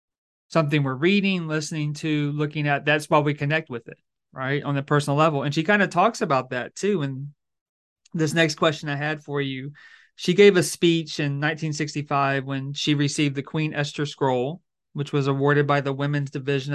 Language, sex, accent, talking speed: English, male, American, 190 wpm